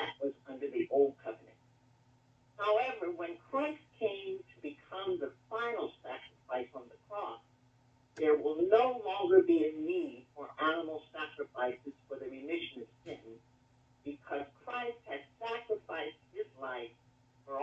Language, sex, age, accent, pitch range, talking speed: English, male, 50-69, American, 125-185 Hz, 135 wpm